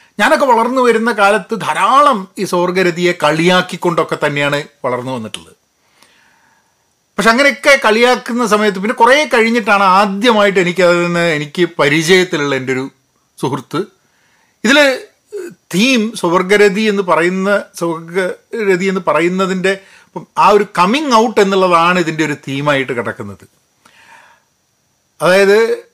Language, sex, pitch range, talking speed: Malayalam, male, 130-200 Hz, 95 wpm